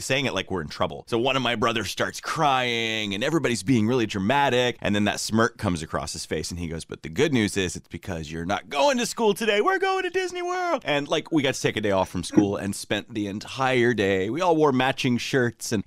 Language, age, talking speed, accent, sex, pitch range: English, 30-49, 260 wpm, American, male, 80-115 Hz